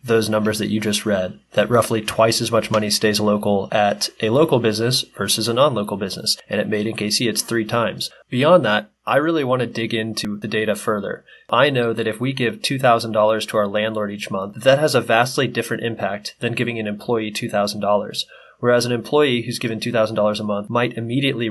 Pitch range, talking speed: 110-120 Hz, 205 wpm